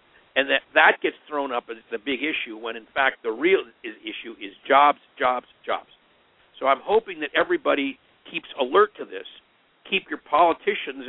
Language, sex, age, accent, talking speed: English, male, 50-69, American, 175 wpm